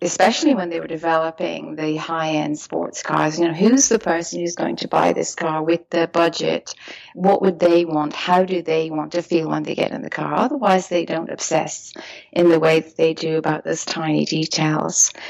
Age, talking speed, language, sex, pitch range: 30-49, 210 wpm, English, female, 160-185 Hz